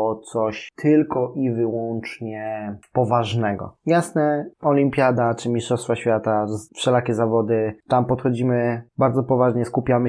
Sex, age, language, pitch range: male, 20-39, Polish, 115-130 Hz